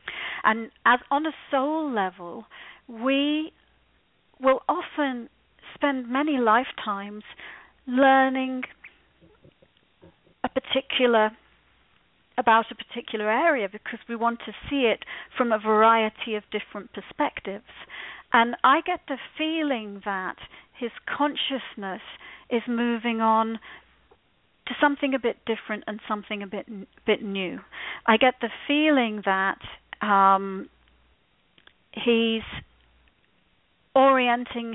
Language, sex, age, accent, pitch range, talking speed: English, female, 40-59, British, 215-270 Hz, 105 wpm